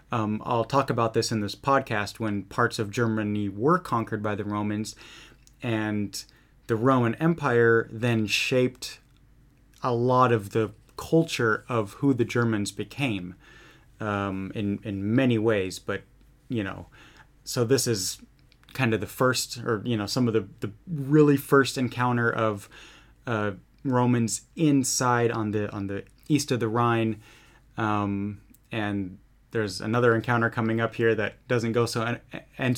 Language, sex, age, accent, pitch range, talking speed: English, male, 30-49, American, 110-130 Hz, 150 wpm